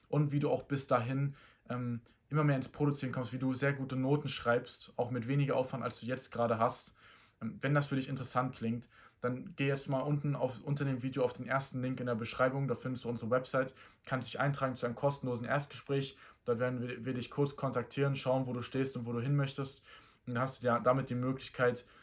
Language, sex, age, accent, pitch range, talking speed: German, male, 20-39, German, 115-135 Hz, 230 wpm